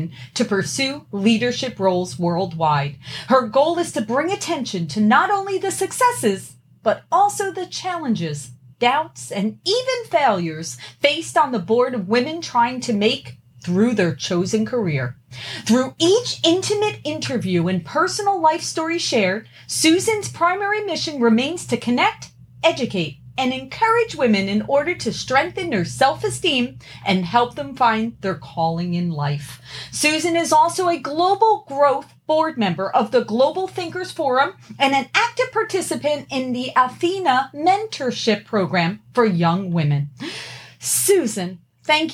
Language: English